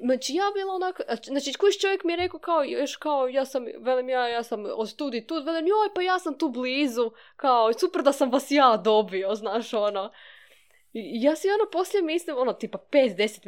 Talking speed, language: 205 wpm, Croatian